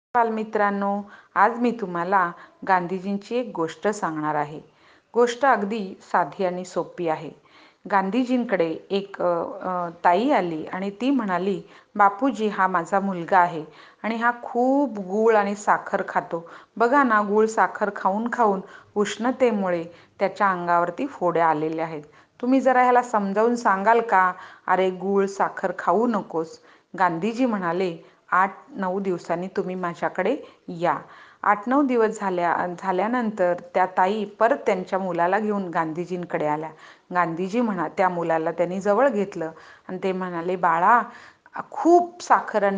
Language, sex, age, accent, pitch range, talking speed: Hindi, female, 40-59, native, 175-225 Hz, 65 wpm